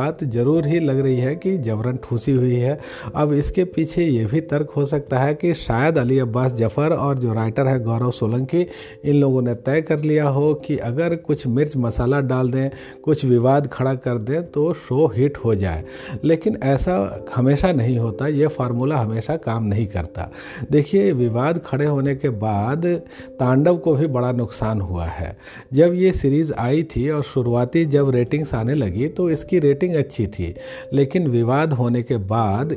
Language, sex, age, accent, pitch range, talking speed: Hindi, male, 50-69, native, 120-155 Hz, 180 wpm